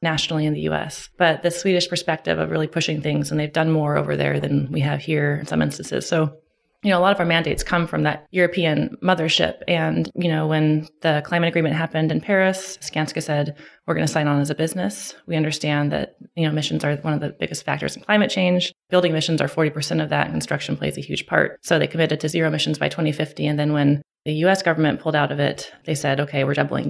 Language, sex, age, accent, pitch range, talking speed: English, female, 20-39, American, 140-160 Hz, 240 wpm